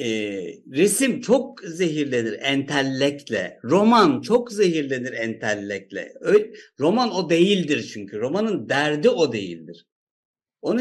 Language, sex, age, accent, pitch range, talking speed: Turkish, male, 60-79, native, 150-215 Hz, 105 wpm